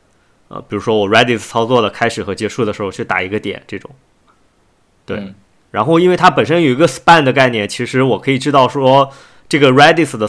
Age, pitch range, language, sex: 20-39, 105-140 Hz, Chinese, male